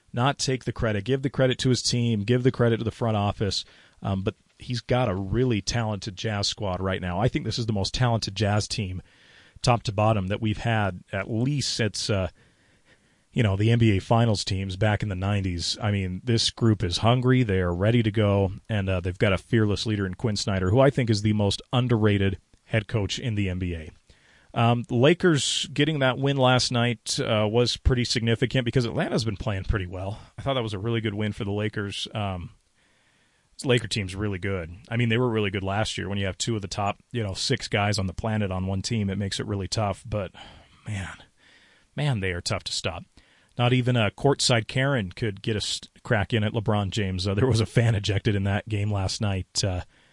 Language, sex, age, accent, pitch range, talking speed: English, male, 40-59, American, 100-120 Hz, 225 wpm